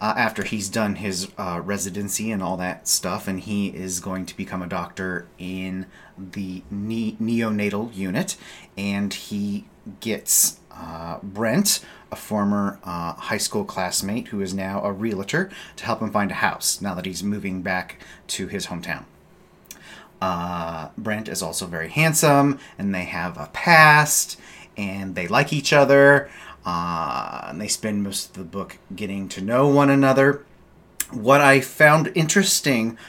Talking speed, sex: 155 wpm, male